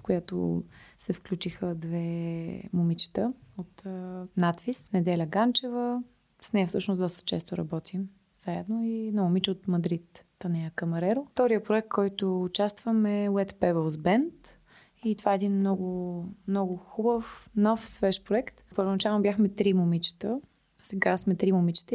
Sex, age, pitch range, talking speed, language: female, 20-39, 175-215 Hz, 145 wpm, Bulgarian